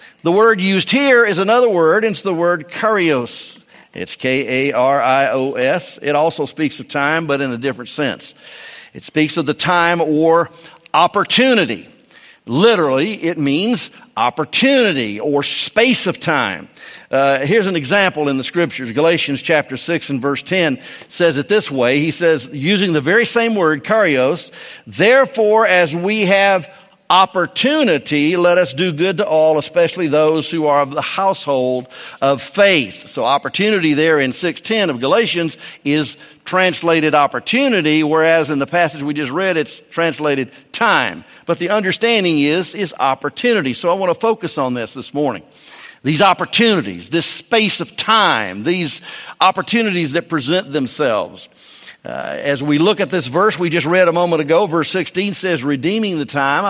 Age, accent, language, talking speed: 50-69, American, English, 155 wpm